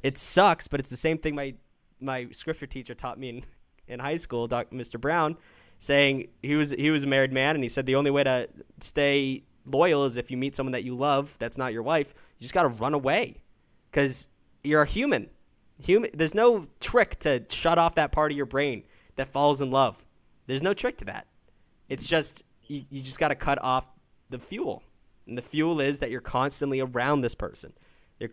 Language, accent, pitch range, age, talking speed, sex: English, American, 120-145 Hz, 20-39, 215 wpm, male